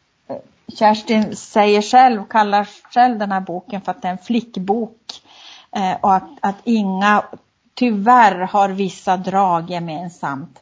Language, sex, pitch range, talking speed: Swedish, female, 180-225 Hz, 135 wpm